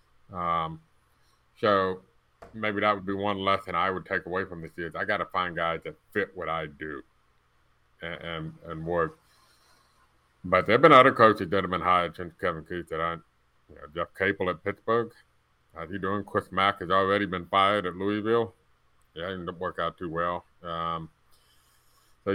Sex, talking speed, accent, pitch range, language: male, 185 wpm, American, 85-105 Hz, English